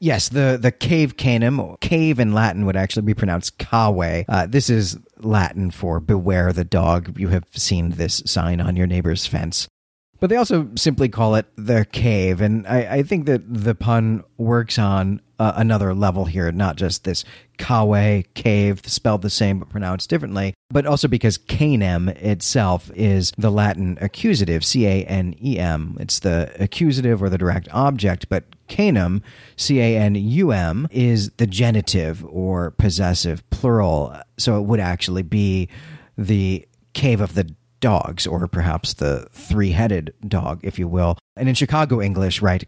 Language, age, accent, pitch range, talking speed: English, 40-59, American, 90-120 Hz, 160 wpm